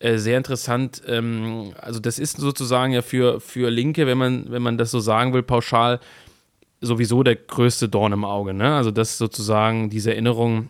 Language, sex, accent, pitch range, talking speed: German, male, German, 110-125 Hz, 180 wpm